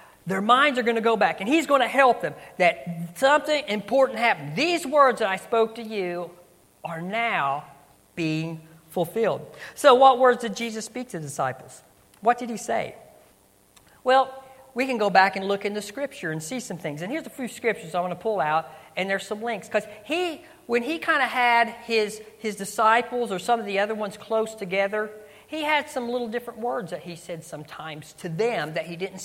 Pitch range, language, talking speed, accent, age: 180-235 Hz, English, 210 wpm, American, 50-69